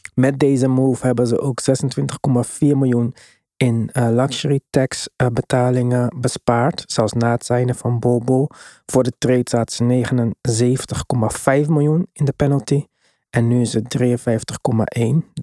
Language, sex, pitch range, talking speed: Dutch, male, 120-135 Hz, 140 wpm